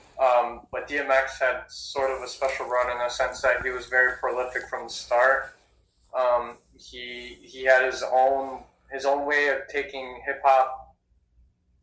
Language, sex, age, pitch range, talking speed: English, male, 20-39, 115-130 Hz, 160 wpm